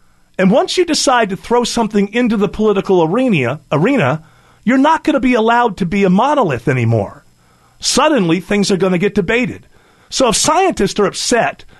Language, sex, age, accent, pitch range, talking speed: English, male, 40-59, American, 165-225 Hz, 180 wpm